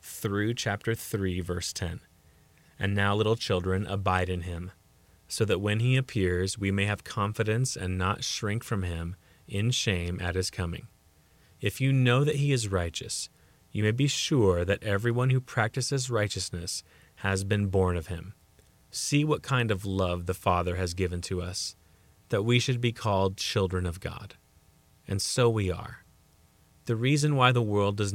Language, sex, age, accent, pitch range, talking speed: English, male, 30-49, American, 90-120 Hz, 175 wpm